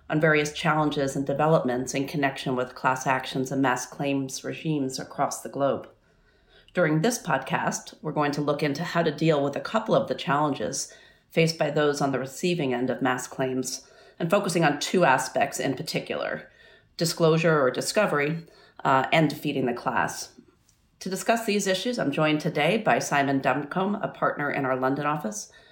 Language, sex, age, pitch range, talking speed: English, female, 40-59, 135-165 Hz, 175 wpm